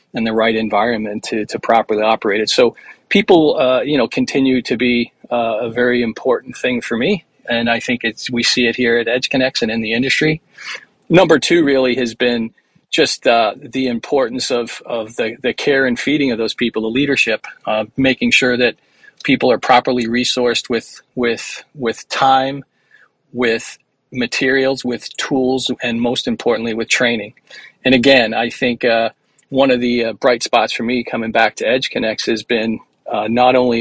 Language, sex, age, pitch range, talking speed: English, male, 40-59, 115-125 Hz, 185 wpm